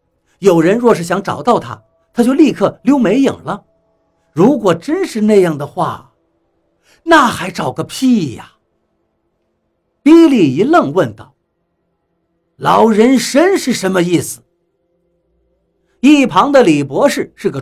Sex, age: male, 60-79